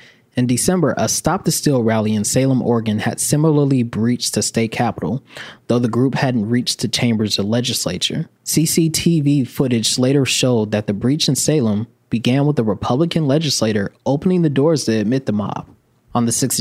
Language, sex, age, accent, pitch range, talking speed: English, male, 20-39, American, 115-140 Hz, 175 wpm